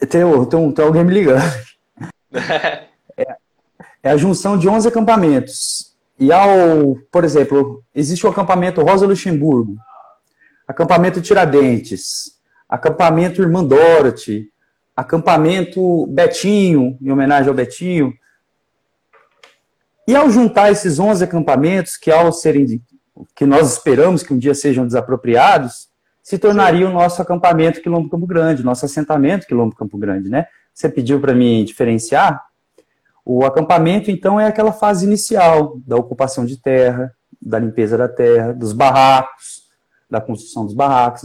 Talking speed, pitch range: 125 wpm, 130-185 Hz